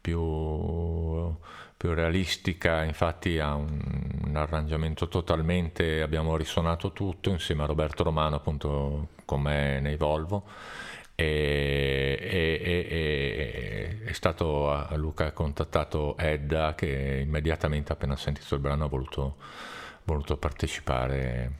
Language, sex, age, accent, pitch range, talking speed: Italian, male, 50-69, native, 75-90 Hz, 115 wpm